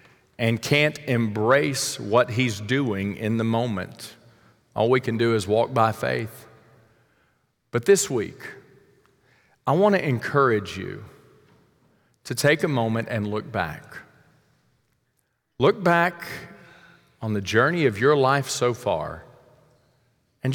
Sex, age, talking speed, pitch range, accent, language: male, 40-59, 125 wpm, 110-145 Hz, American, English